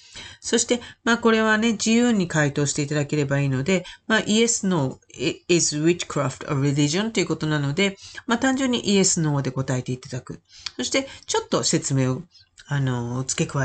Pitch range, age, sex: 125-210 Hz, 40-59, female